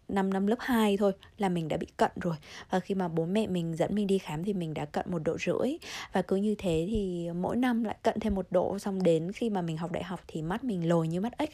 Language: Vietnamese